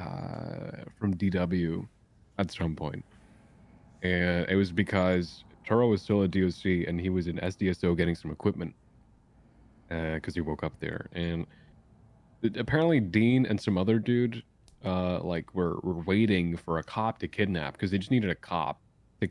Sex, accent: male, American